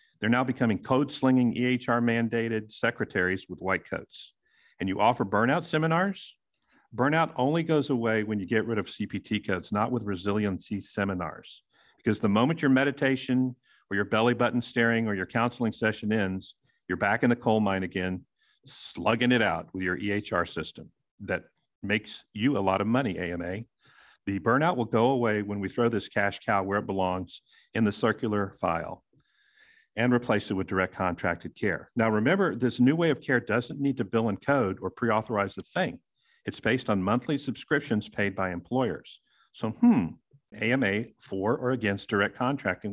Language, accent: English, American